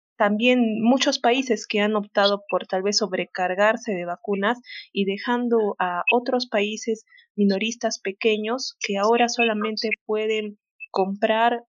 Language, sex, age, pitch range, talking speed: Spanish, female, 30-49, 190-230 Hz, 125 wpm